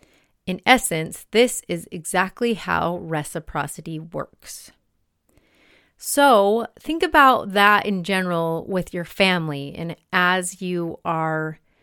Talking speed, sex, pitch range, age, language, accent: 105 wpm, female, 160-205 Hz, 30-49, English, American